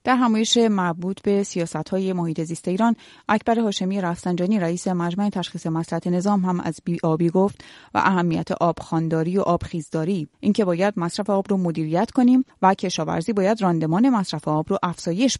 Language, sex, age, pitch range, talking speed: Persian, female, 30-49, 170-210 Hz, 165 wpm